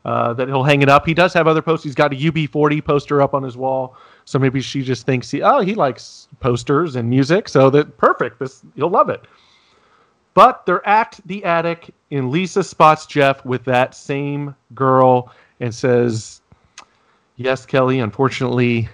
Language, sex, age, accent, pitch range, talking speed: English, male, 30-49, American, 125-155 Hz, 180 wpm